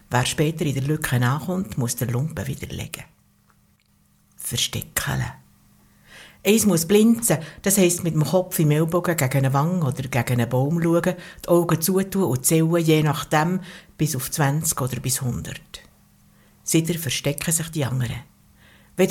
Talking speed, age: 155 wpm, 60-79